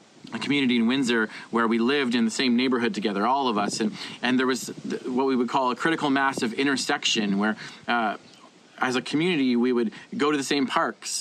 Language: English